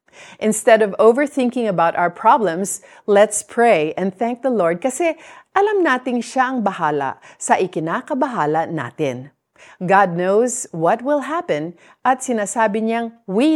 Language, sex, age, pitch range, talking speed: Filipino, female, 40-59, 165-230 Hz, 135 wpm